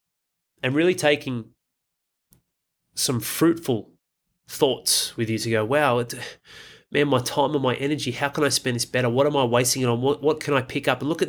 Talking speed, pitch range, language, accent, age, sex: 200 wpm, 120-145 Hz, English, Australian, 30-49, male